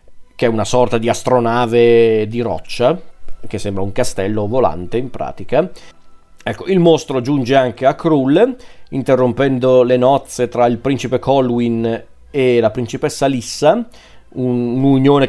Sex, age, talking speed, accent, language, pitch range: male, 40-59, 135 wpm, native, Italian, 120-140 Hz